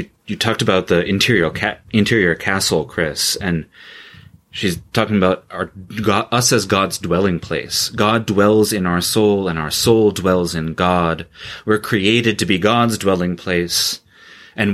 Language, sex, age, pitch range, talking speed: English, male, 30-49, 85-105 Hz, 160 wpm